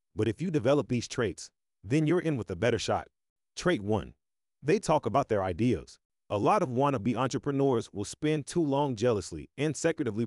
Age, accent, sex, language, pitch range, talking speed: 30-49, American, male, English, 100-150 Hz, 185 wpm